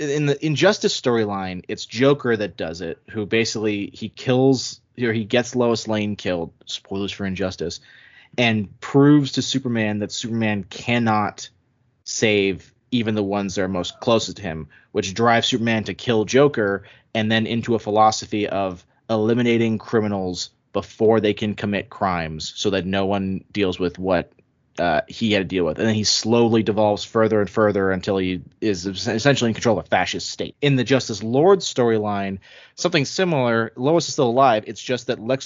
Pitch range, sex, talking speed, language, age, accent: 100-125 Hz, male, 175 wpm, English, 20-39, American